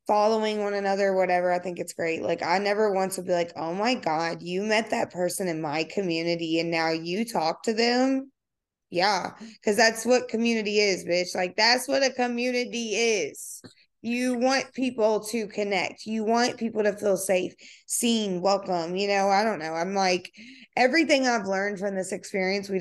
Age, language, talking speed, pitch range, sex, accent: 20-39, English, 185 wpm, 180-215 Hz, female, American